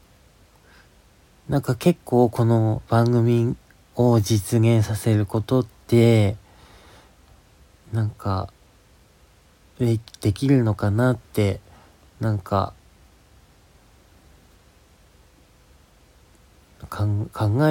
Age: 40-59